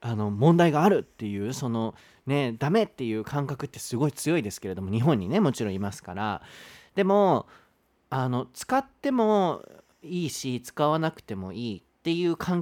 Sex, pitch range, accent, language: male, 110-180 Hz, native, Japanese